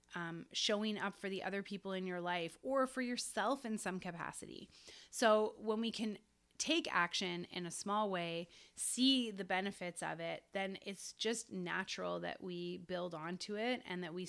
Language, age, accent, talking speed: English, 30-49, American, 180 wpm